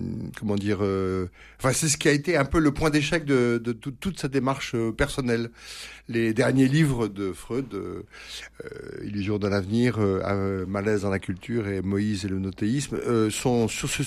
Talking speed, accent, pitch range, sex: 200 wpm, French, 100-140 Hz, male